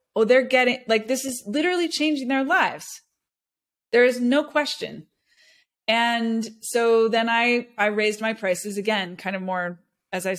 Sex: female